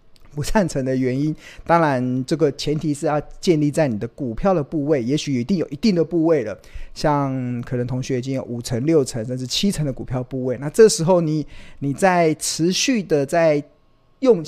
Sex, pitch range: male, 130-180 Hz